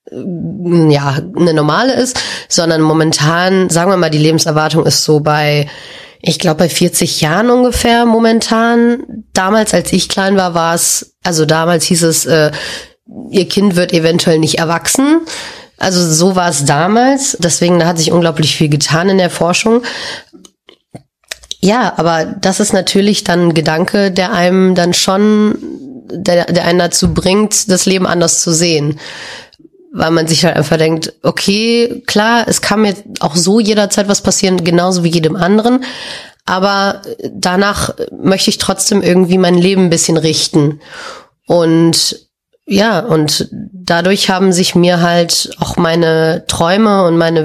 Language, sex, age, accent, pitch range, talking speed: German, female, 30-49, German, 165-205 Hz, 150 wpm